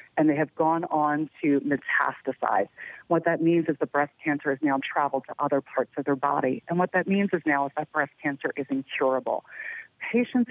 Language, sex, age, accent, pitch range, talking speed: English, female, 30-49, American, 145-180 Hz, 205 wpm